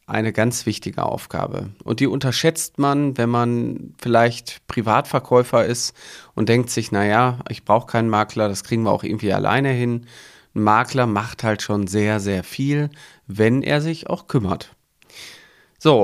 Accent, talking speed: German, 155 wpm